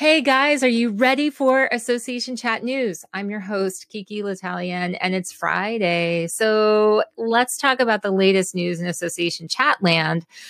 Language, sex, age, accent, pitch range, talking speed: English, female, 30-49, American, 180-245 Hz, 155 wpm